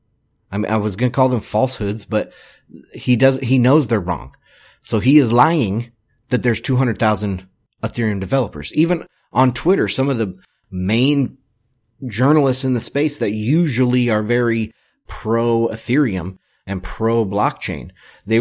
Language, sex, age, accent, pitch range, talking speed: English, male, 30-49, American, 105-130 Hz, 145 wpm